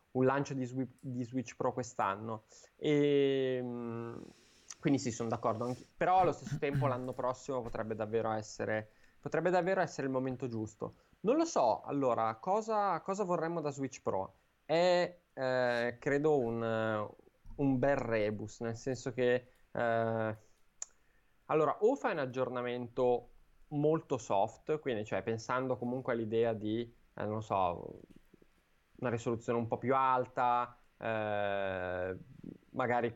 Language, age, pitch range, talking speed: Italian, 20-39, 110-130 Hz, 135 wpm